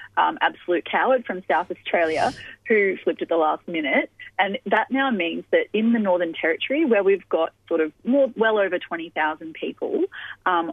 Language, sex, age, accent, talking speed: English, female, 30-49, Australian, 175 wpm